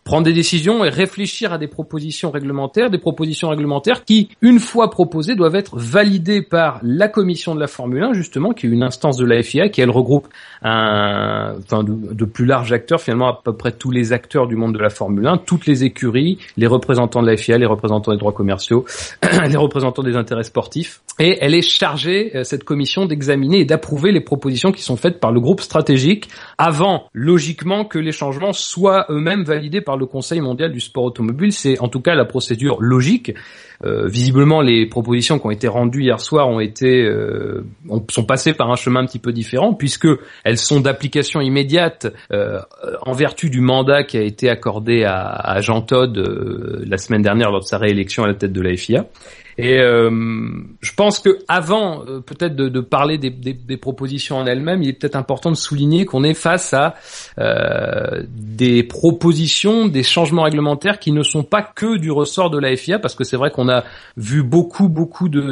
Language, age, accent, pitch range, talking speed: French, 30-49, French, 120-170 Hz, 205 wpm